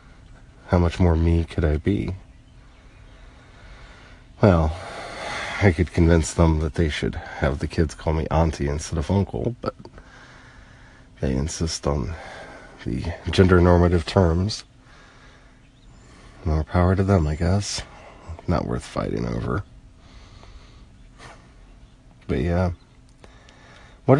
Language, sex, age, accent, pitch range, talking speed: English, male, 40-59, American, 80-100 Hz, 110 wpm